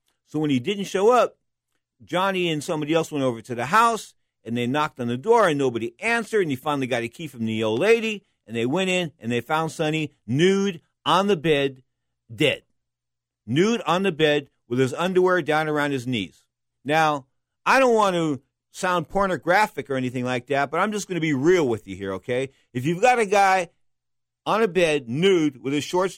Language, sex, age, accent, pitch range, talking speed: English, male, 50-69, American, 125-175 Hz, 210 wpm